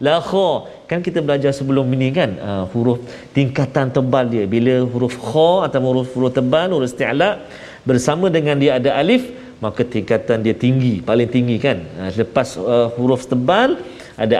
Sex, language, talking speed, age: male, Malayalam, 165 wpm, 40-59